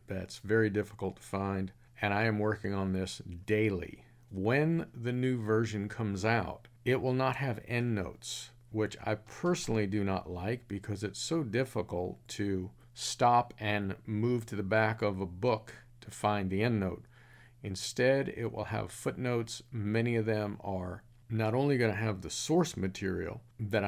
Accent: American